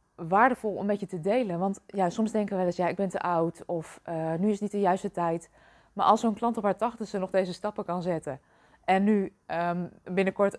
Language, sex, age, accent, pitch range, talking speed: Dutch, female, 20-39, Dutch, 180-220 Hz, 245 wpm